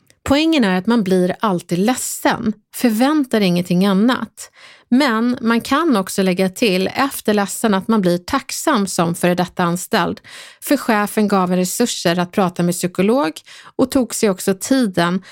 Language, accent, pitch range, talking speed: Swedish, native, 170-225 Hz, 155 wpm